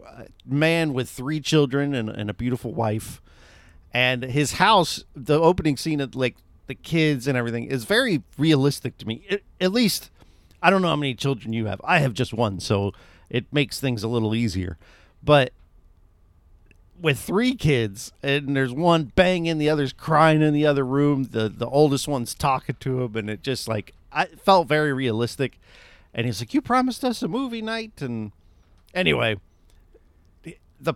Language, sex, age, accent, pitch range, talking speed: English, male, 50-69, American, 110-155 Hz, 175 wpm